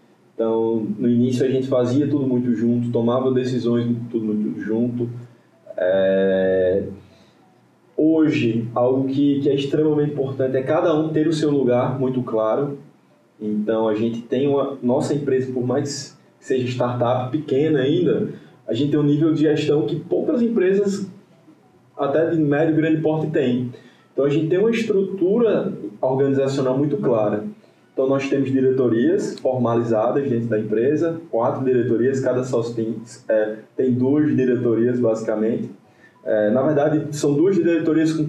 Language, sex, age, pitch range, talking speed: Portuguese, male, 20-39, 120-155 Hz, 150 wpm